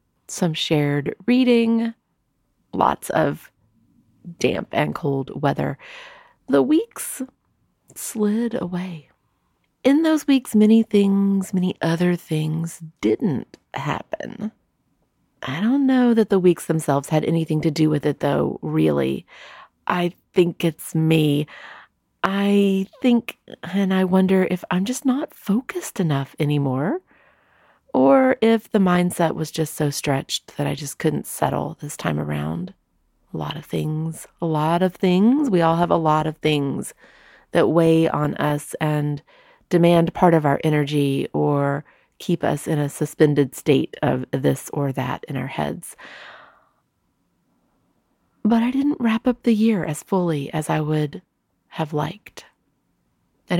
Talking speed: 140 wpm